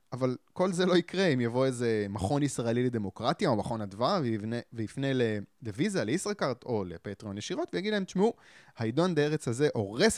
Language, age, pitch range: Hebrew, 20-39, 110-150 Hz